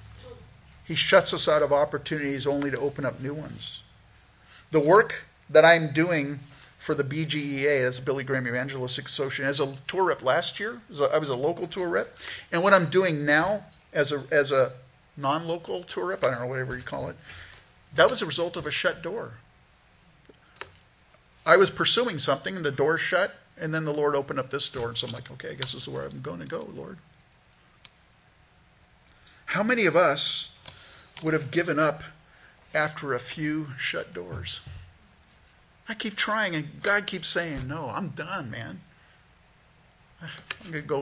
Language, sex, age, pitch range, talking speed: English, male, 50-69, 125-160 Hz, 180 wpm